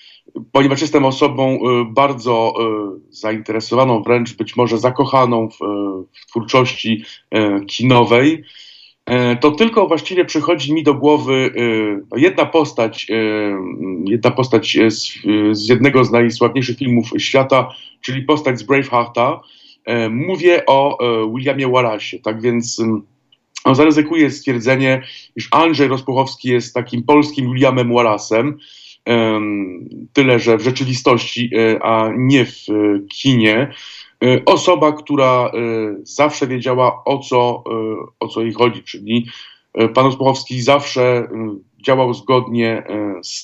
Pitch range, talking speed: 115-135 Hz, 105 wpm